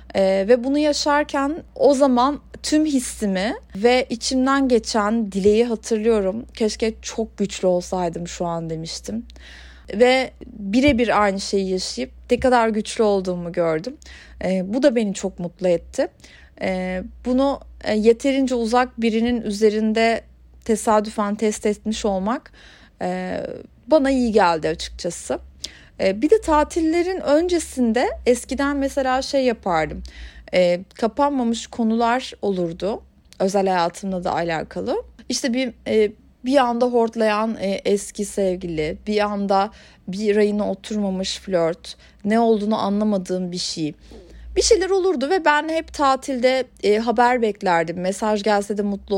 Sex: female